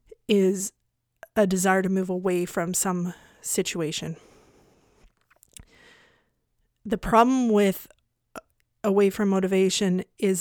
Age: 30-49